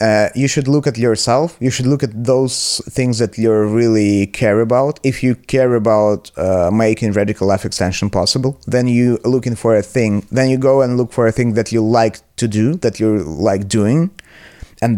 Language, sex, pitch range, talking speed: English, male, 105-130 Hz, 205 wpm